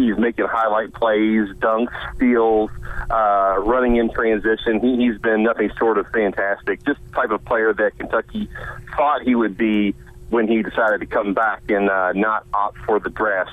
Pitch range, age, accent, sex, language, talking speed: 105-120 Hz, 40-59, American, male, English, 175 wpm